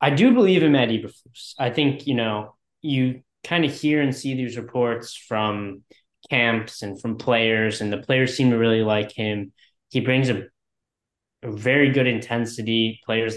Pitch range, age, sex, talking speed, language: 105-125 Hz, 20-39, male, 170 wpm, English